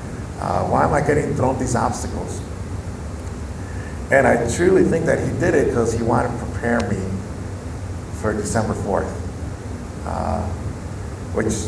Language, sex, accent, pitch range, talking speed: English, male, American, 95-110 Hz, 140 wpm